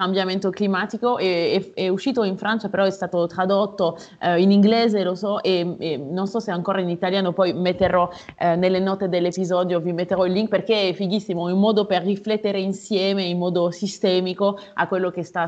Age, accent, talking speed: 30-49, native, 195 wpm